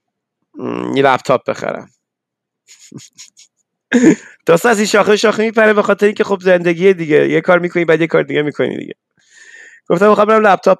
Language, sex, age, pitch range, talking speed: Persian, male, 30-49, 160-210 Hz, 180 wpm